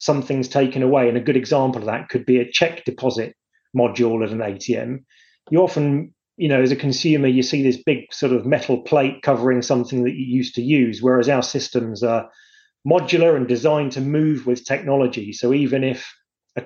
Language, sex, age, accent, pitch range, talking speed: English, male, 30-49, British, 120-145 Hz, 200 wpm